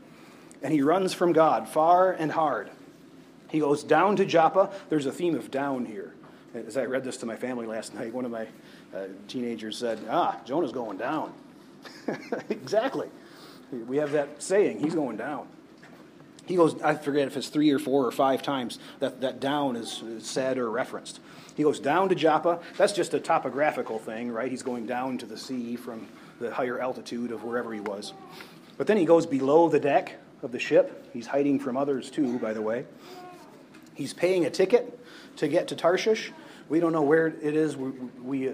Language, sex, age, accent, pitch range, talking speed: English, male, 40-59, American, 125-155 Hz, 190 wpm